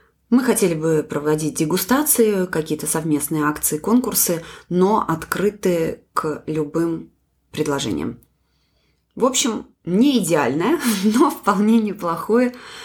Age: 20-39